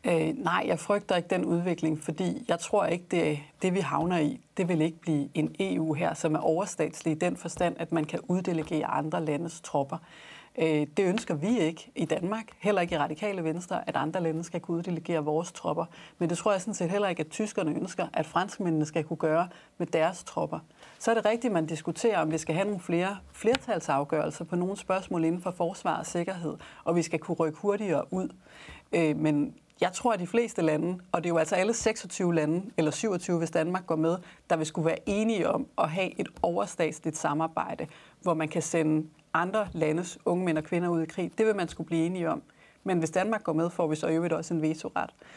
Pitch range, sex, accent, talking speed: 160-185 Hz, female, native, 225 wpm